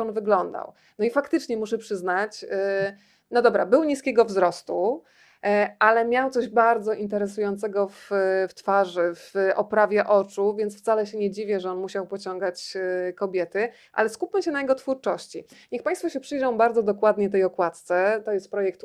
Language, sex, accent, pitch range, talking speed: Polish, female, native, 185-225 Hz, 160 wpm